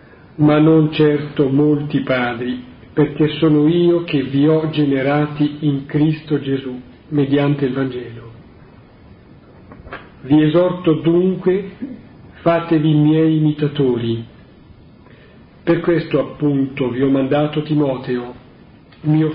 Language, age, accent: Italian, 50-69, native